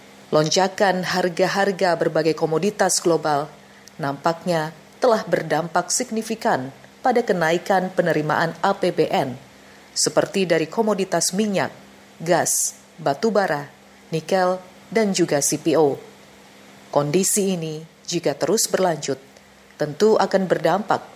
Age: 40-59